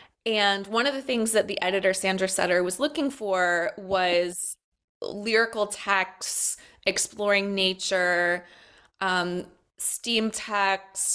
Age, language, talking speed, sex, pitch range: 20-39, English, 115 wpm, female, 185-225 Hz